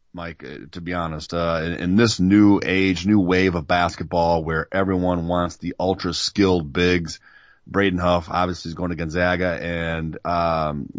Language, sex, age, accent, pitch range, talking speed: English, male, 30-49, American, 85-100 Hz, 165 wpm